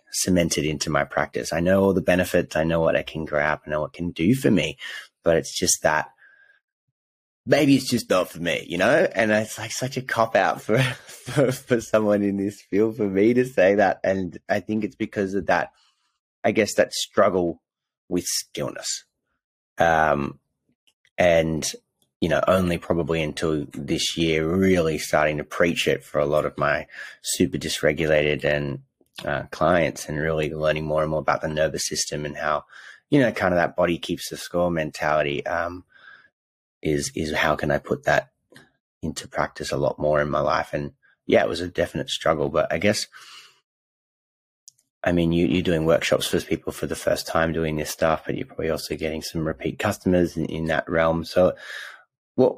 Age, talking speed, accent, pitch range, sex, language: 30-49, 190 wpm, Australian, 75-100 Hz, male, English